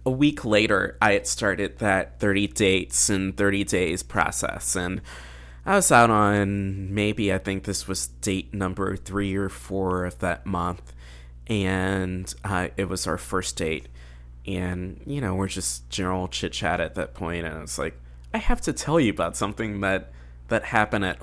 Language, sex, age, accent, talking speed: English, male, 20-39, American, 180 wpm